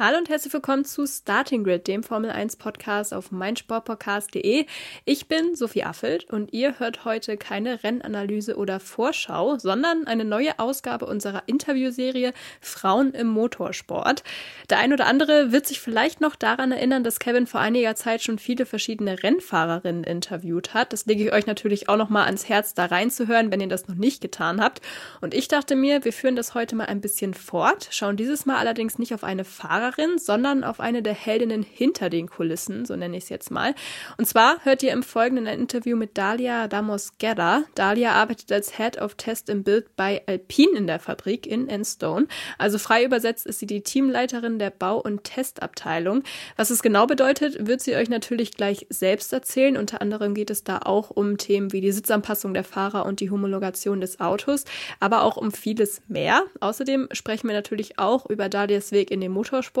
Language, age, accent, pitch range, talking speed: German, 20-39, German, 205-255 Hz, 190 wpm